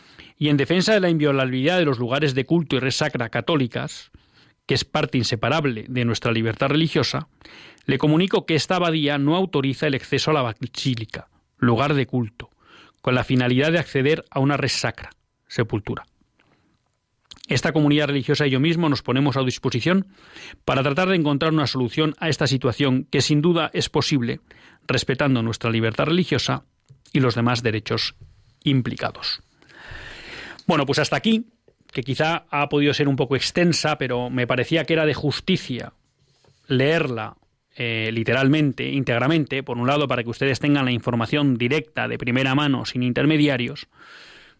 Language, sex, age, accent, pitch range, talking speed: Spanish, male, 40-59, Spanish, 125-155 Hz, 155 wpm